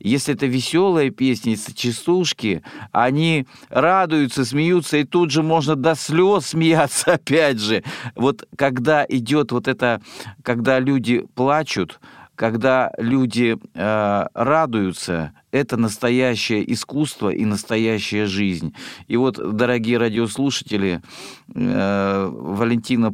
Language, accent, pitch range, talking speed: Russian, native, 105-130 Hz, 105 wpm